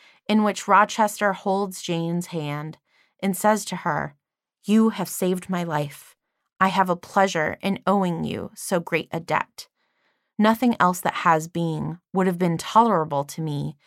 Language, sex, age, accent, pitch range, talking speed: English, female, 20-39, American, 165-200 Hz, 160 wpm